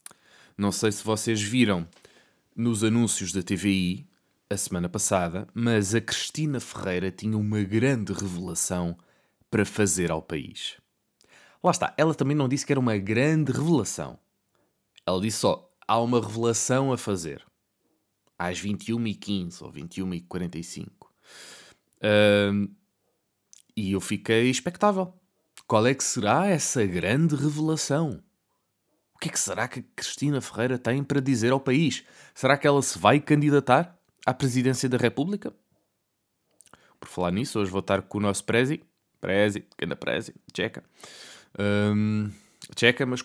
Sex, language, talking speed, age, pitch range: male, Portuguese, 140 wpm, 20-39, 100-130 Hz